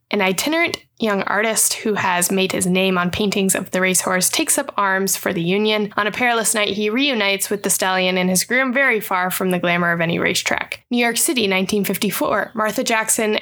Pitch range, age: 190-240 Hz, 10-29